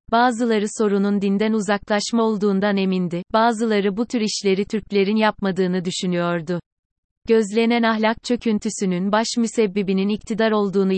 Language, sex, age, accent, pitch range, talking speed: Turkish, female, 30-49, native, 190-225 Hz, 110 wpm